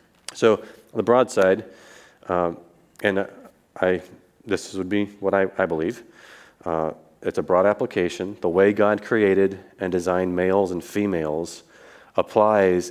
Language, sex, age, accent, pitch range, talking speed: English, male, 30-49, American, 90-105 Hz, 135 wpm